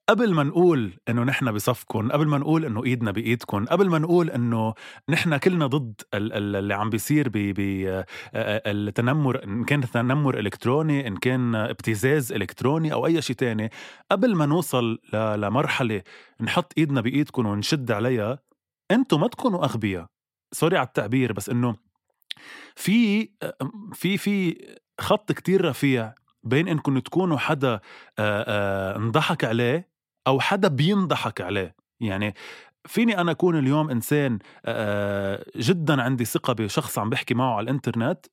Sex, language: male, Arabic